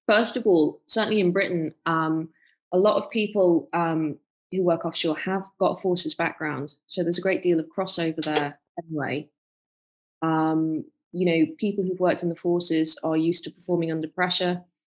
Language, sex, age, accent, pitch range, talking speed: English, female, 20-39, British, 160-195 Hz, 180 wpm